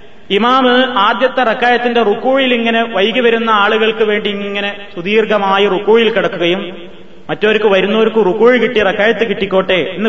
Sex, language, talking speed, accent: male, Malayalam, 105 wpm, native